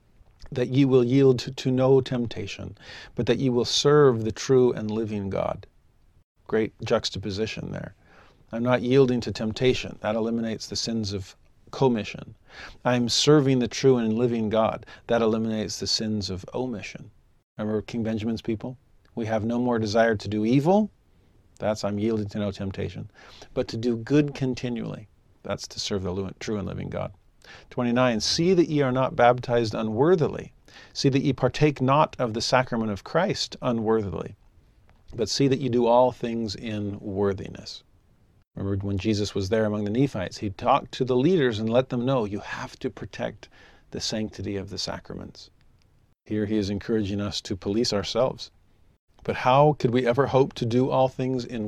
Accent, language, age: American, English, 50-69